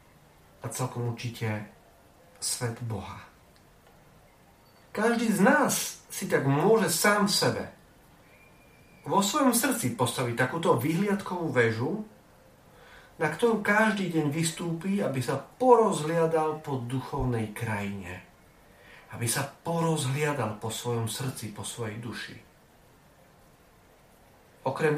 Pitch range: 115-165 Hz